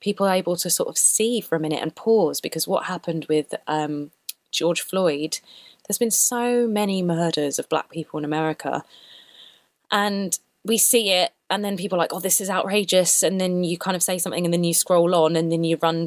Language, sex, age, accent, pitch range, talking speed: Danish, female, 20-39, British, 155-180 Hz, 215 wpm